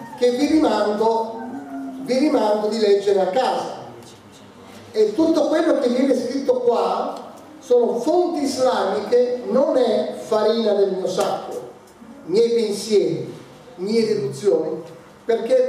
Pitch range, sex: 220-300 Hz, male